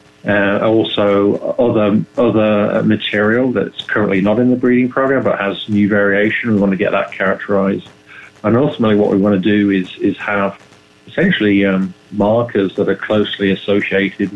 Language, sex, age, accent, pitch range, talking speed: English, male, 40-59, British, 95-105 Hz, 165 wpm